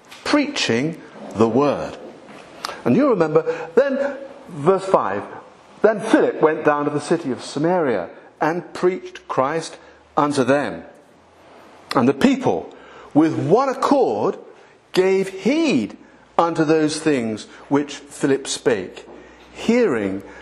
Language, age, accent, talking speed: English, 50-69, British, 110 wpm